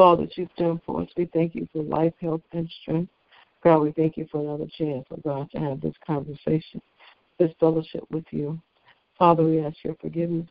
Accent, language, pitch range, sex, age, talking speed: American, English, 150-170 Hz, female, 60-79, 205 wpm